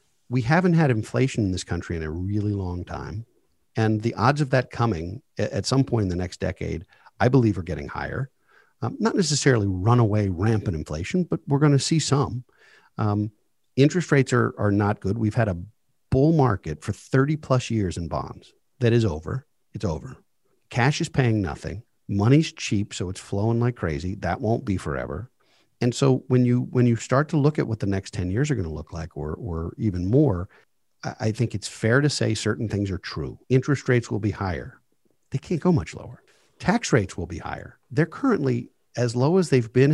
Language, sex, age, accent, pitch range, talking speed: English, male, 50-69, American, 95-135 Hz, 205 wpm